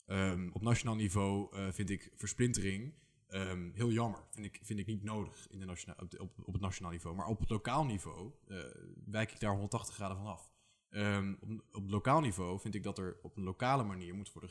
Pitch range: 95-115 Hz